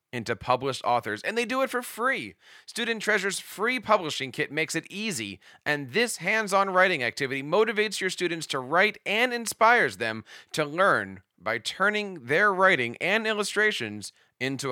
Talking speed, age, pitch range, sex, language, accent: 160 wpm, 40-59, 135-215 Hz, male, English, American